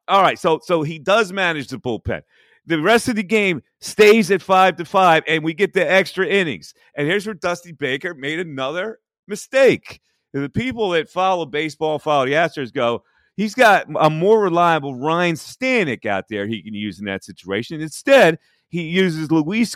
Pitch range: 140-190 Hz